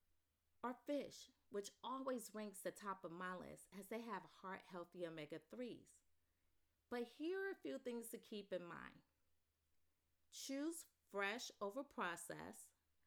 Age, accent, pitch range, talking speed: 30-49, American, 165-240 Hz, 135 wpm